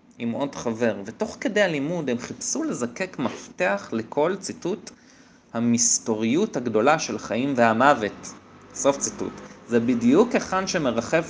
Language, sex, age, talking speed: Hebrew, male, 20-39, 120 wpm